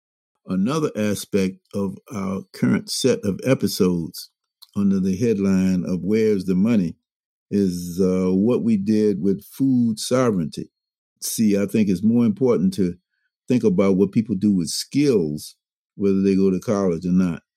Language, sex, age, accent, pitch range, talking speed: English, male, 50-69, American, 95-125 Hz, 150 wpm